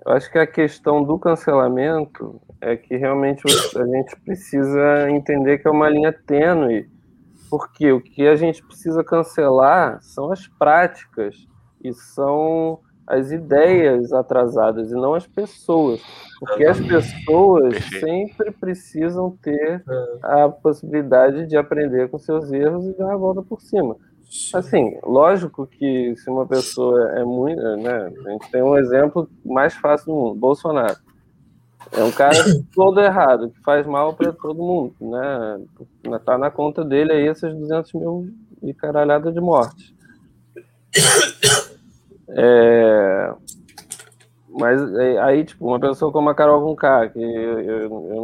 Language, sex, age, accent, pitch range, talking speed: Portuguese, male, 20-39, Brazilian, 130-160 Hz, 140 wpm